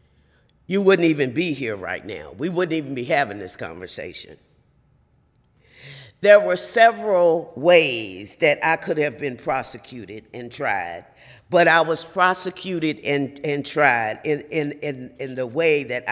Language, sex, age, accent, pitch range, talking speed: English, female, 50-69, American, 130-170 Hz, 140 wpm